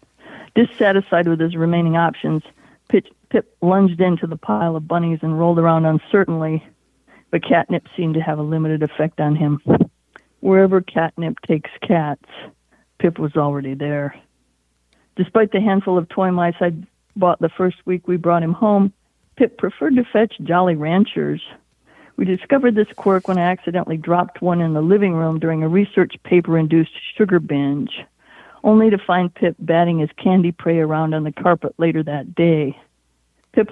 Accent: American